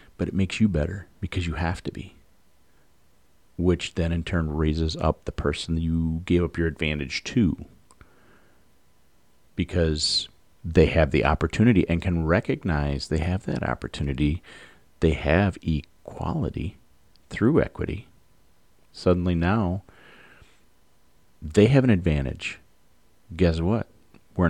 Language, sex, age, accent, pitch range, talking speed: English, male, 40-59, American, 80-95 Hz, 120 wpm